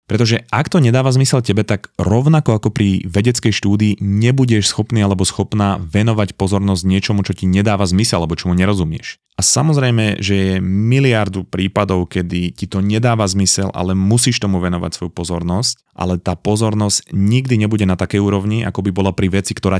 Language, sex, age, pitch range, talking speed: Slovak, male, 30-49, 95-110 Hz, 175 wpm